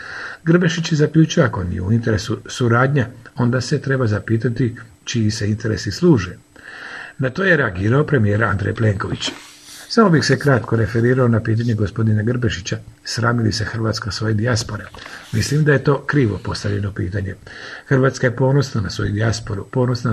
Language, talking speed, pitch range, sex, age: Croatian, 150 wpm, 110-135 Hz, male, 50-69